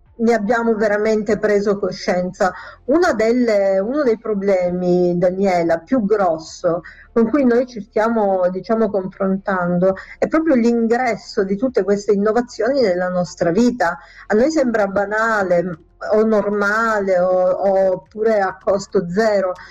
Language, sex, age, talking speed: Italian, female, 50-69, 125 wpm